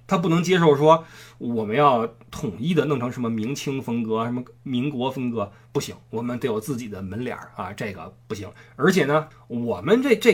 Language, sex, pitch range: Chinese, male, 120-200 Hz